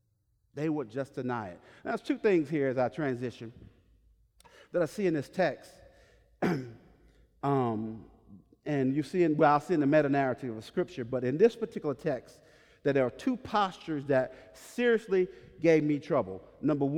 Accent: American